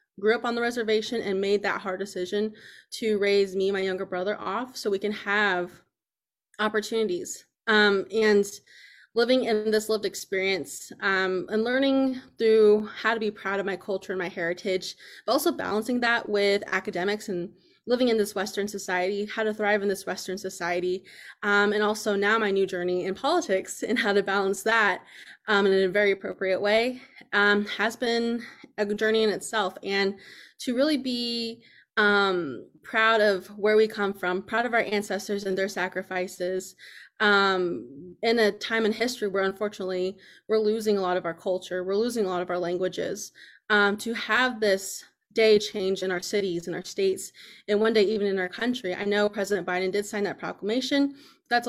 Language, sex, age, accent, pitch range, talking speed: English, female, 20-39, American, 190-225 Hz, 180 wpm